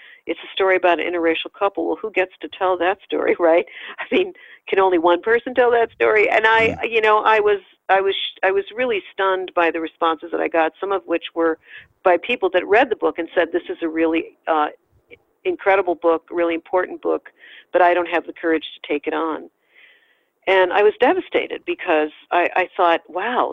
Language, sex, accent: English, female, American